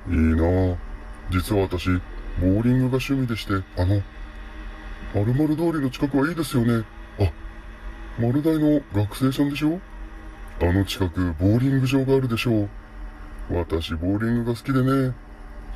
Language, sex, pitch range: Japanese, female, 75-110 Hz